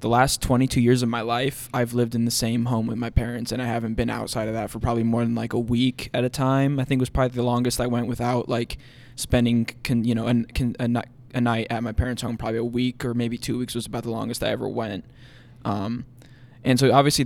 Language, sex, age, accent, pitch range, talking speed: English, male, 20-39, American, 120-130 Hz, 245 wpm